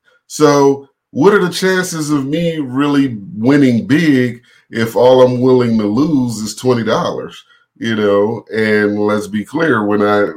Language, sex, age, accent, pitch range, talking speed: English, male, 30-49, American, 100-140 Hz, 150 wpm